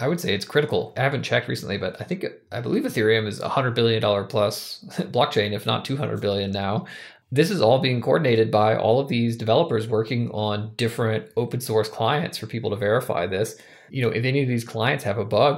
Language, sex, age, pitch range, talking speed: English, male, 20-39, 110-125 Hz, 220 wpm